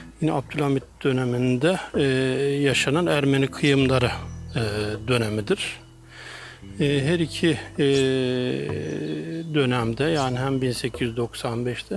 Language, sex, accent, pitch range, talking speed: Turkish, male, native, 110-140 Hz, 65 wpm